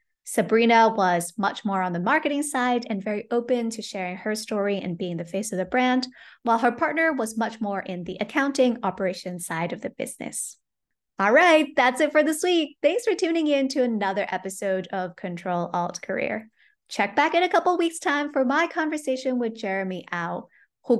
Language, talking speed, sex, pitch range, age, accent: English, 195 wpm, female, 195-280 Hz, 20-39, American